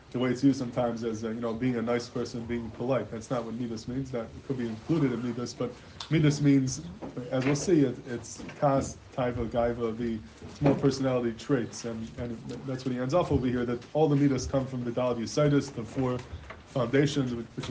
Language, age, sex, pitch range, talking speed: English, 20-39, male, 115-135 Hz, 215 wpm